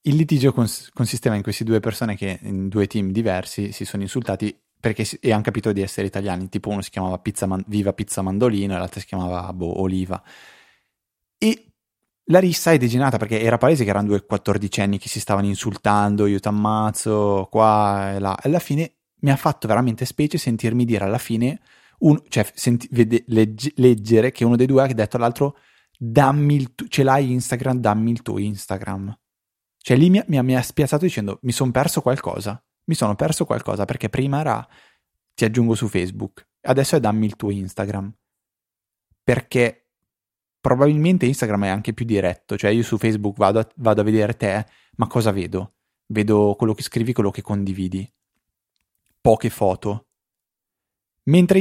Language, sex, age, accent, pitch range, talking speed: Italian, male, 20-39, native, 100-130 Hz, 180 wpm